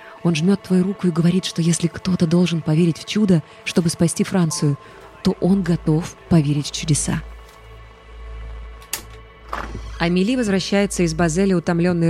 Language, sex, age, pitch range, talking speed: Russian, female, 20-39, 150-180 Hz, 135 wpm